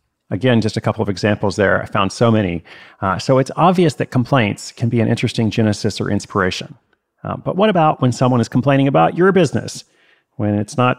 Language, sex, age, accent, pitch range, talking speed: English, male, 30-49, American, 100-125 Hz, 205 wpm